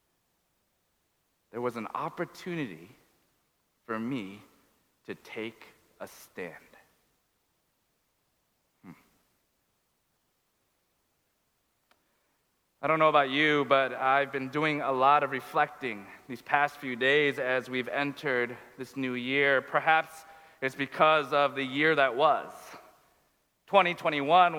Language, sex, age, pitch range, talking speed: English, male, 40-59, 150-225 Hz, 105 wpm